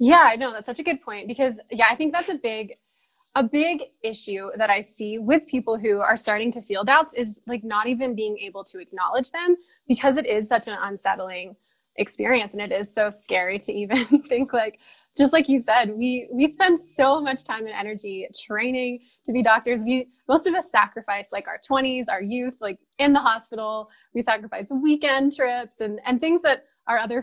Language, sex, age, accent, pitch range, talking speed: English, female, 20-39, American, 215-270 Hz, 205 wpm